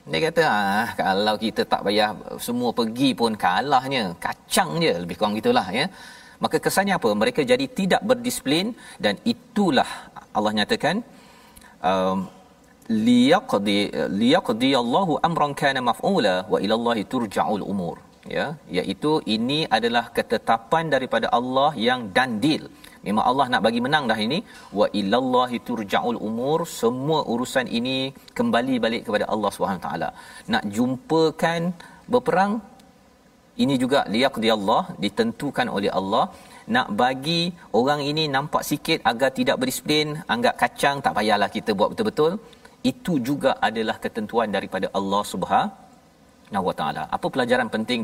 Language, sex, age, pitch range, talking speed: Malayalam, male, 40-59, 150-250 Hz, 130 wpm